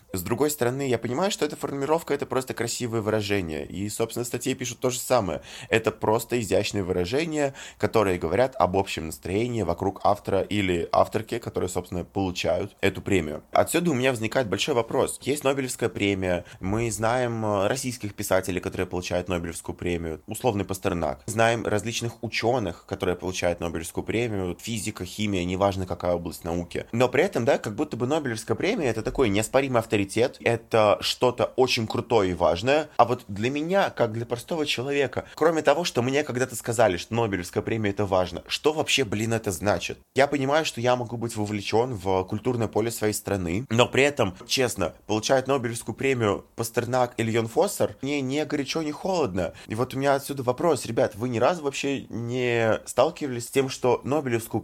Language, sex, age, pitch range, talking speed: Russian, male, 20-39, 100-125 Hz, 175 wpm